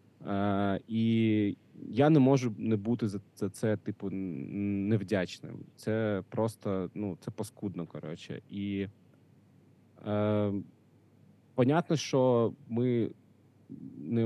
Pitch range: 100-140 Hz